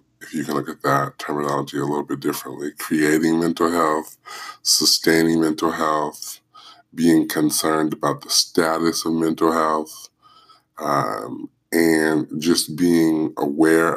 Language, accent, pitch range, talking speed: English, American, 75-80 Hz, 125 wpm